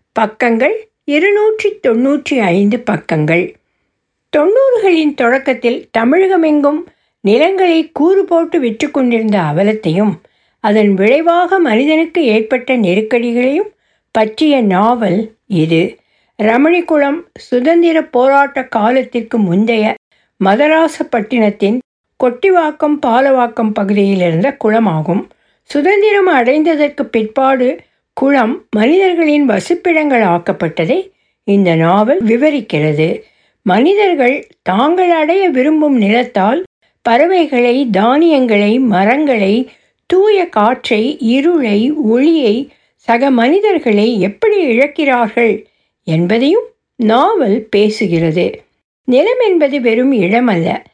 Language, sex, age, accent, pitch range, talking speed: Tamil, female, 60-79, native, 215-310 Hz, 75 wpm